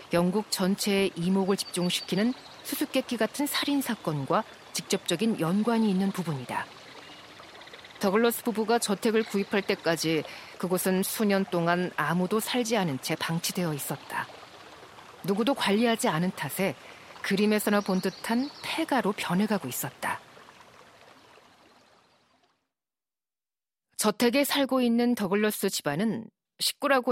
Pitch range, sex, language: 180-230 Hz, female, Korean